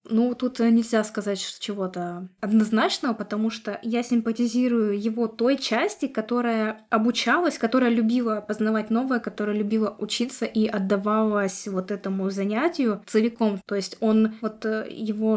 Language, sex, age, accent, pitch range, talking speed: Russian, female, 20-39, native, 205-235 Hz, 135 wpm